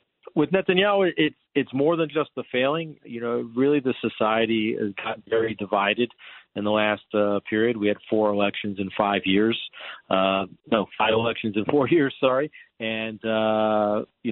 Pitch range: 105-130 Hz